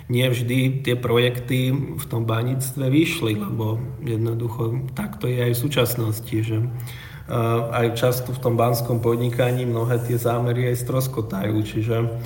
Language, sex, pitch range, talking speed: Slovak, male, 115-130 Hz, 130 wpm